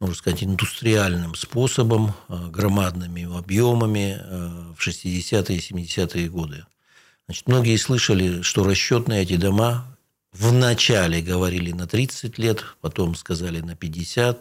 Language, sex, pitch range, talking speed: Russian, male, 90-110 Hz, 115 wpm